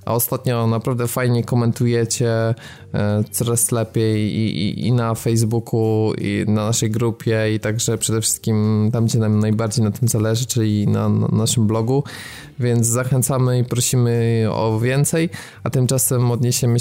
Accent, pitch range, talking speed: native, 115-130 Hz, 145 wpm